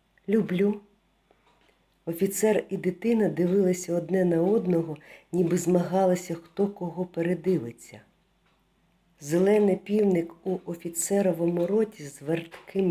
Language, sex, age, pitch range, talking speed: Ukrainian, female, 50-69, 160-190 Hz, 95 wpm